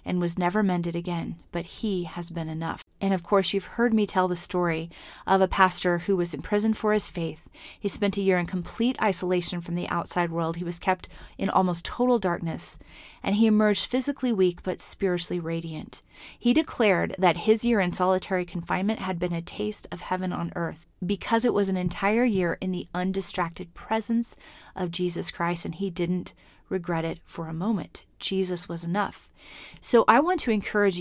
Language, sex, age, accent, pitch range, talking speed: English, female, 30-49, American, 175-210 Hz, 195 wpm